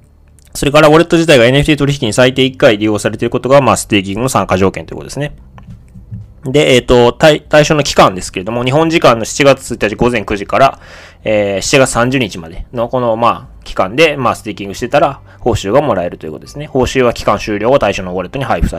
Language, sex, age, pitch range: Japanese, male, 20-39, 95-135 Hz